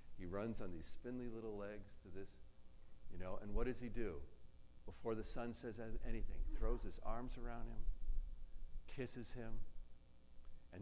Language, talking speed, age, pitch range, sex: English, 160 wpm, 50-69, 75-110 Hz, male